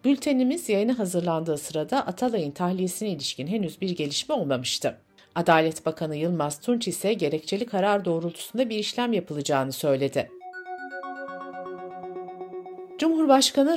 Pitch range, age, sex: 155-230 Hz, 60-79, female